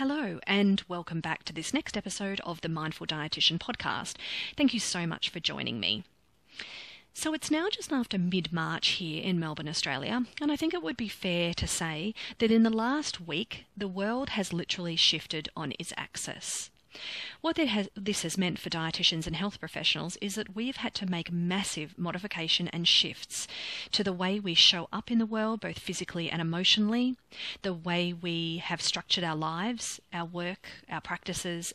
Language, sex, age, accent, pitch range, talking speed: English, female, 30-49, Australian, 165-210 Hz, 180 wpm